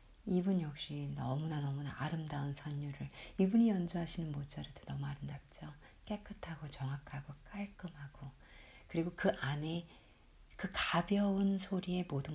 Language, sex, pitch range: Korean, female, 140-180 Hz